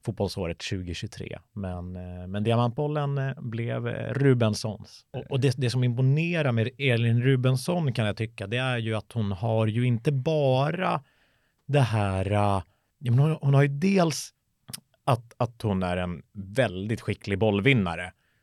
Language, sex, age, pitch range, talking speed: Swedish, male, 30-49, 95-130 Hz, 145 wpm